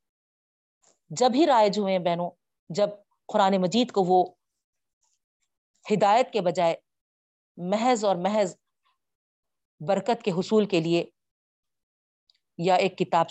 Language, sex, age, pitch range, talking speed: Urdu, female, 40-59, 170-215 Hz, 115 wpm